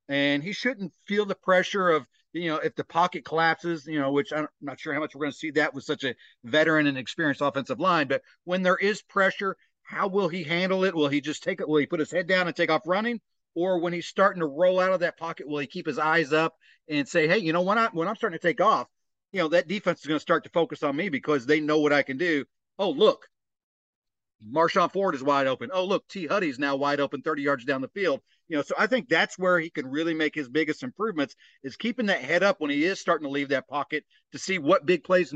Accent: American